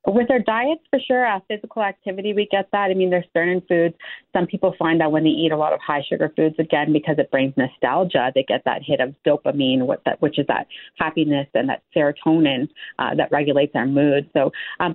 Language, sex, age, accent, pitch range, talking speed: English, female, 30-49, American, 150-190 Hz, 220 wpm